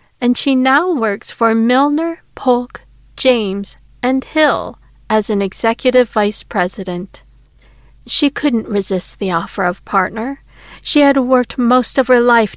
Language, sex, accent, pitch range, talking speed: English, female, American, 195-250 Hz, 140 wpm